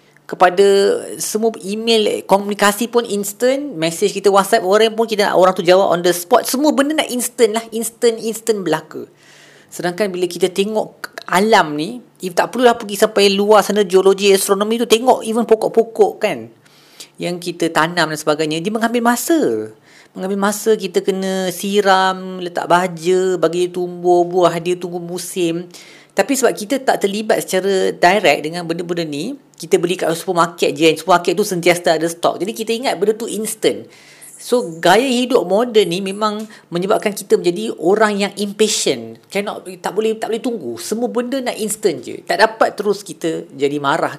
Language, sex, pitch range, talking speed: Malay, female, 175-225 Hz, 165 wpm